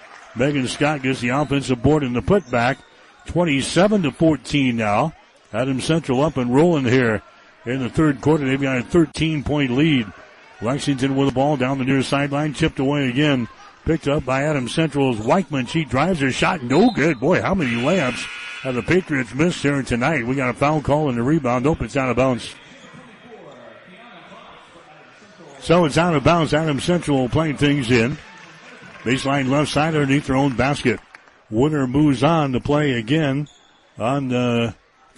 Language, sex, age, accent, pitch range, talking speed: English, male, 60-79, American, 125-150 Hz, 170 wpm